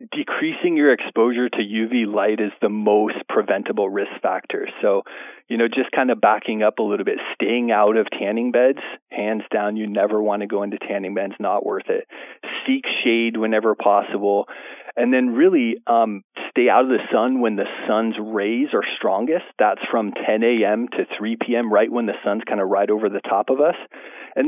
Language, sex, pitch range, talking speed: English, male, 105-125 Hz, 195 wpm